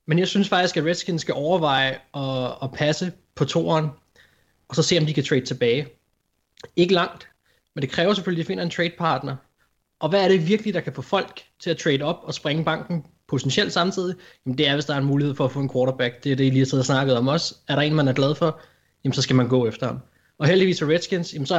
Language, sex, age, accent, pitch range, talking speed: Danish, male, 20-39, native, 135-170 Hz, 255 wpm